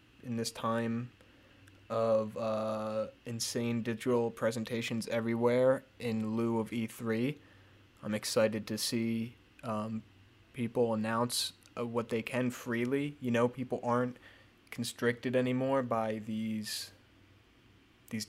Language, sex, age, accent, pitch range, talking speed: English, male, 20-39, American, 110-125 Hz, 110 wpm